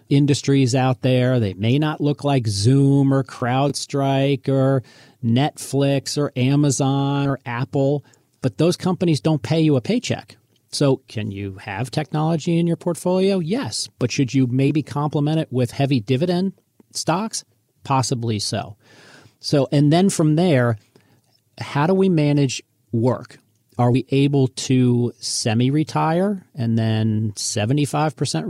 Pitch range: 120-150 Hz